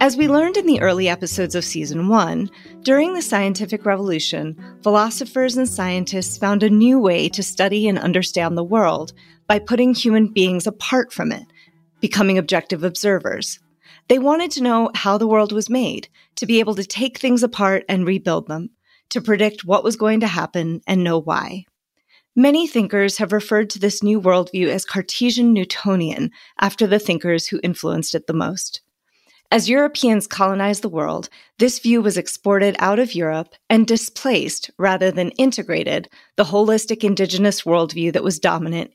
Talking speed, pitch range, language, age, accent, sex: 165 wpm, 180-230 Hz, English, 30-49, American, female